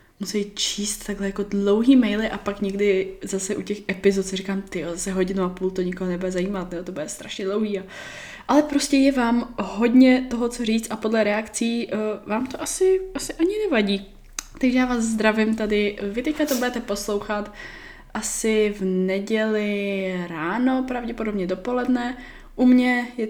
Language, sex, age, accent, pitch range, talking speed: Czech, female, 10-29, native, 185-240 Hz, 170 wpm